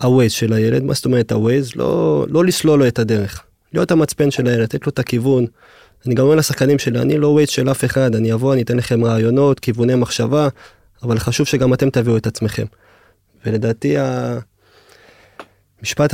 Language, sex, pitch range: Hebrew, male, 115-140 Hz